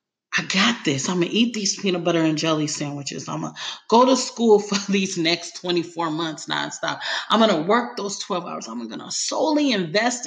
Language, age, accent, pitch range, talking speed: English, 30-49, American, 185-245 Hz, 215 wpm